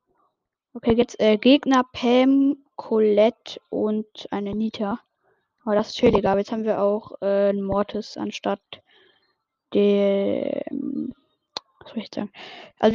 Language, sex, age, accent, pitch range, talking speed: German, female, 10-29, German, 210-260 Hz, 130 wpm